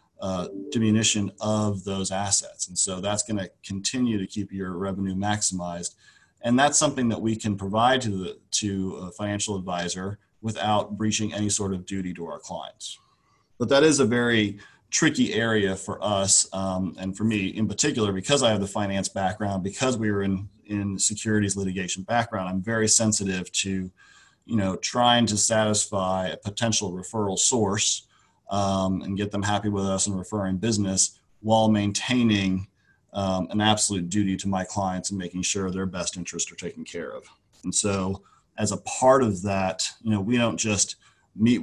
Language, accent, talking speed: English, American, 175 wpm